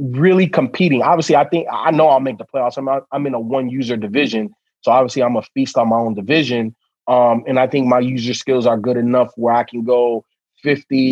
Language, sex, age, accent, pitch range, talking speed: English, male, 30-49, American, 125-150 Hz, 230 wpm